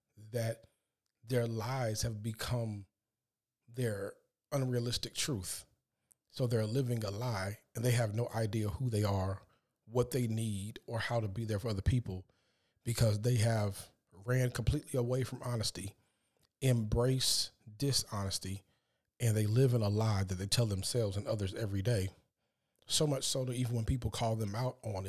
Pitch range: 110-130 Hz